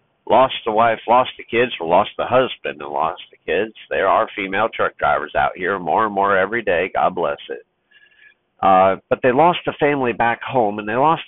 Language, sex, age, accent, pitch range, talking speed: English, male, 50-69, American, 105-150 Hz, 215 wpm